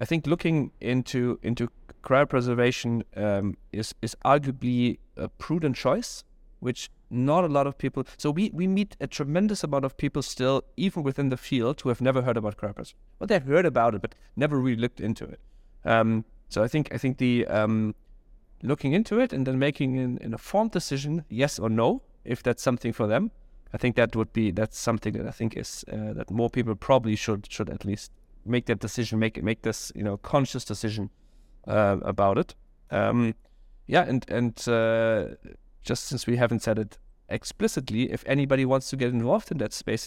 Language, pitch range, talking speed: English, 110-140 Hz, 195 wpm